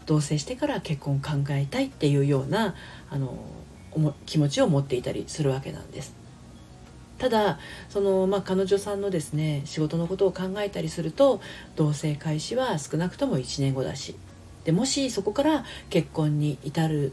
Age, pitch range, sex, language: 40-59, 140-205 Hz, female, Japanese